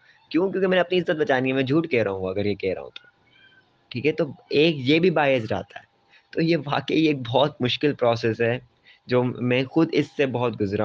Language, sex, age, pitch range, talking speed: Urdu, male, 20-39, 115-150 Hz, 230 wpm